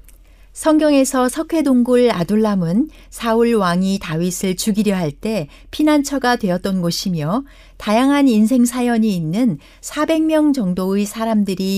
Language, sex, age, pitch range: Korean, female, 60-79, 185-250 Hz